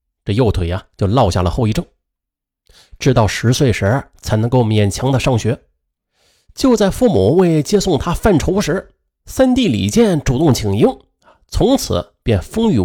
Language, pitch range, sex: Chinese, 100-160 Hz, male